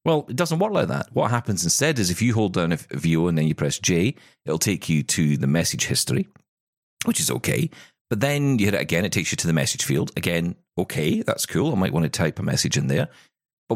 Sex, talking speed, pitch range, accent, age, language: male, 255 wpm, 90-130 Hz, British, 40-59, English